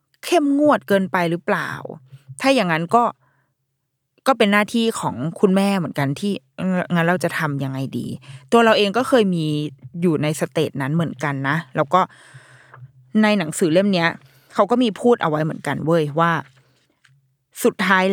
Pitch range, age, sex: 150-195 Hz, 20-39, female